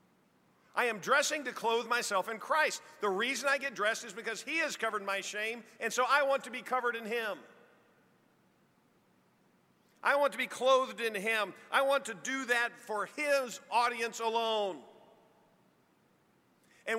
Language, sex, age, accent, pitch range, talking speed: English, male, 50-69, American, 215-275 Hz, 165 wpm